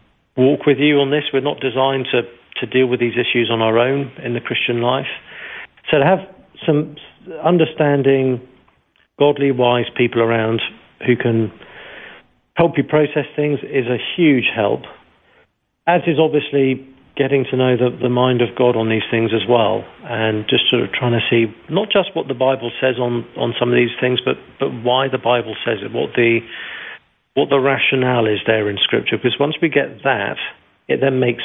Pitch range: 115-140 Hz